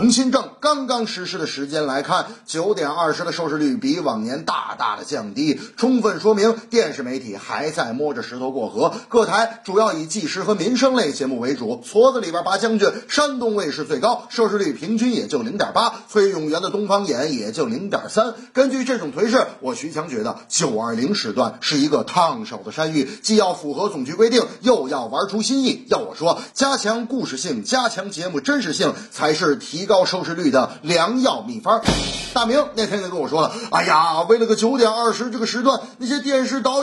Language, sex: Chinese, male